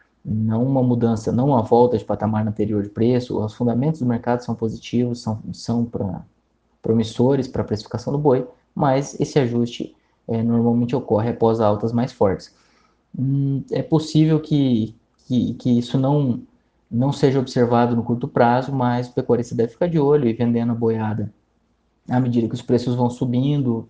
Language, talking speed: Portuguese, 170 wpm